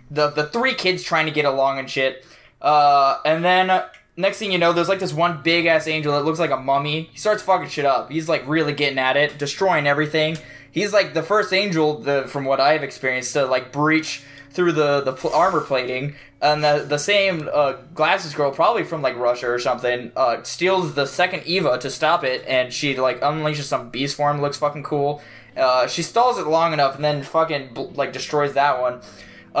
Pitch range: 140-175 Hz